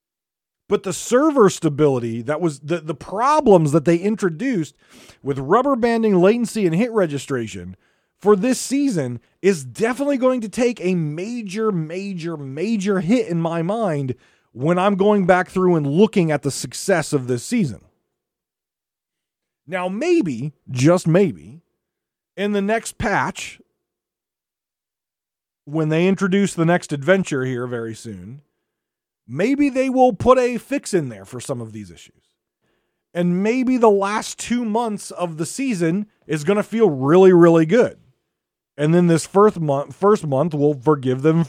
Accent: American